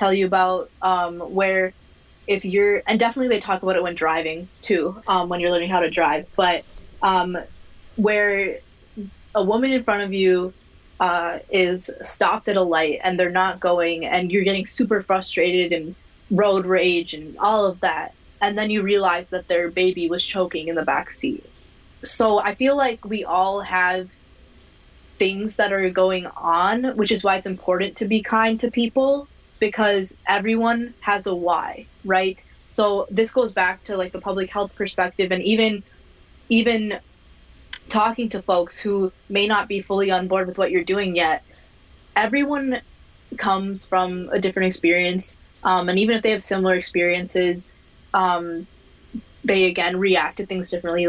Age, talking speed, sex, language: 20-39, 170 wpm, female, English